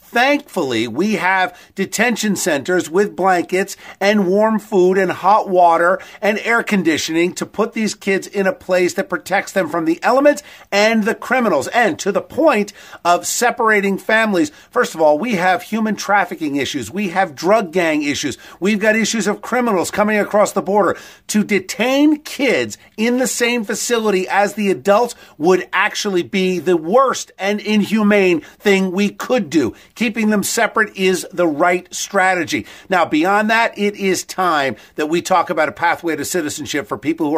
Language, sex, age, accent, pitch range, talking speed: English, male, 50-69, American, 175-215 Hz, 170 wpm